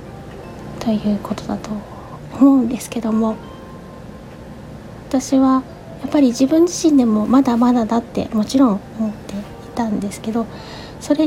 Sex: female